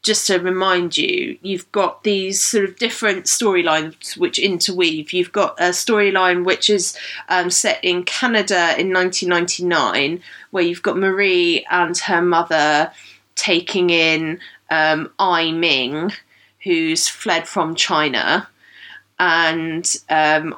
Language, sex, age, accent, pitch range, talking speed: English, female, 20-39, British, 160-190 Hz, 125 wpm